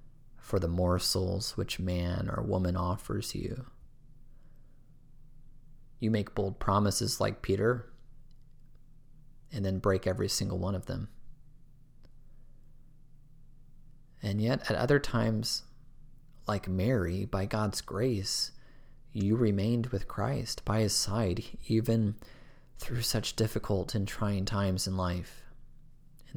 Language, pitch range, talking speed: English, 95-135 Hz, 115 wpm